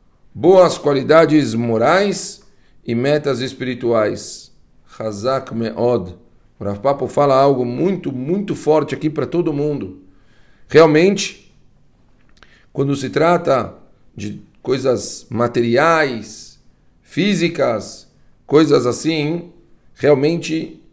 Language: Portuguese